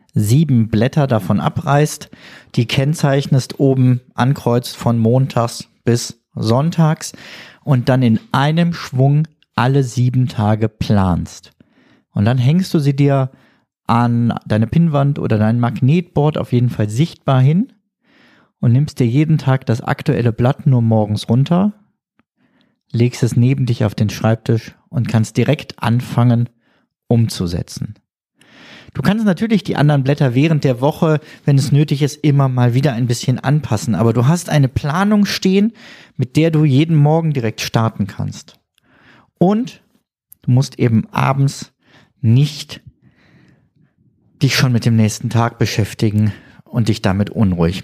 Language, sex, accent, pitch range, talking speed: German, male, German, 120-155 Hz, 140 wpm